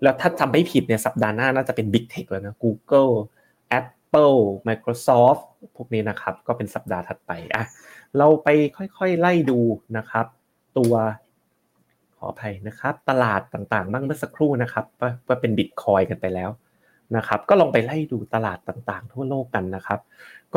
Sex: male